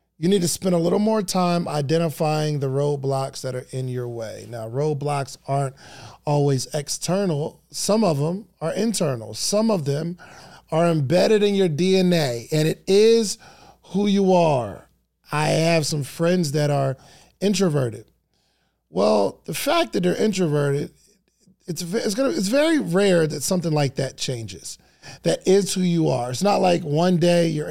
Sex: male